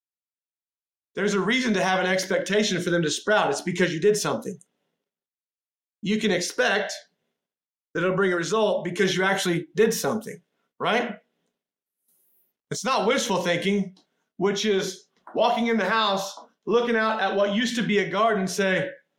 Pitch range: 175-215 Hz